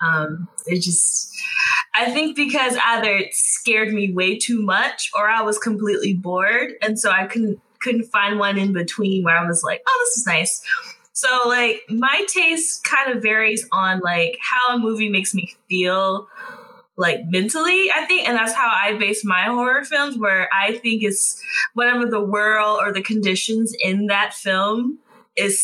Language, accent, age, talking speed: English, American, 20-39, 180 wpm